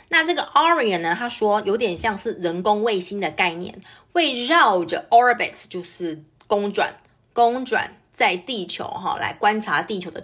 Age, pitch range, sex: 30-49, 175-235 Hz, female